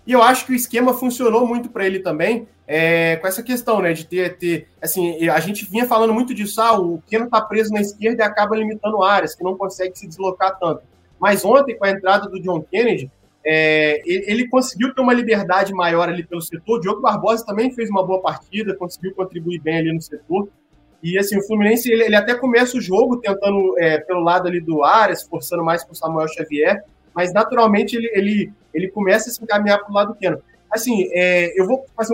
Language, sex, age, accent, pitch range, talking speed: Portuguese, male, 20-39, Brazilian, 170-225 Hz, 220 wpm